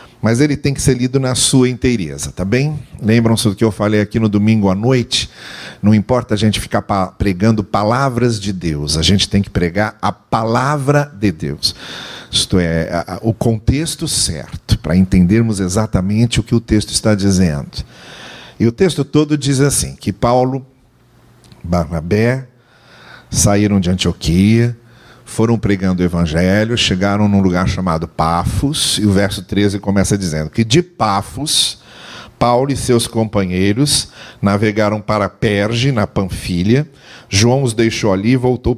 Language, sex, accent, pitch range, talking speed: Portuguese, male, Brazilian, 100-130 Hz, 150 wpm